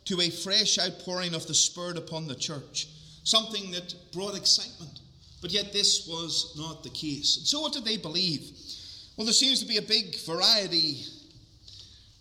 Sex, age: male, 30-49